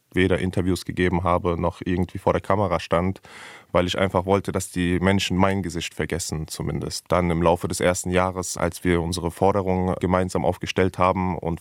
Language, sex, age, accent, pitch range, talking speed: German, male, 20-39, German, 85-95 Hz, 180 wpm